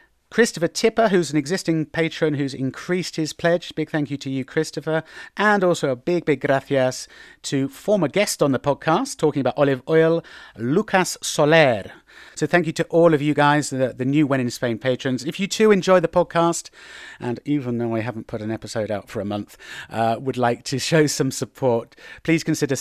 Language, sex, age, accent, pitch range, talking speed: English, male, 40-59, British, 120-165 Hz, 200 wpm